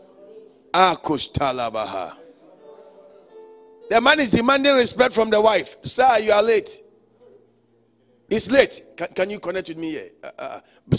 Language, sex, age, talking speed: English, male, 50-69, 125 wpm